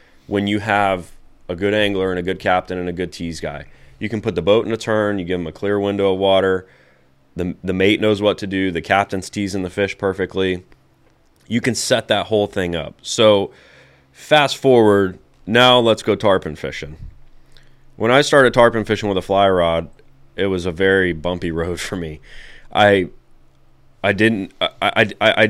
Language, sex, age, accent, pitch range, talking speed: English, male, 20-39, American, 85-105 Hz, 190 wpm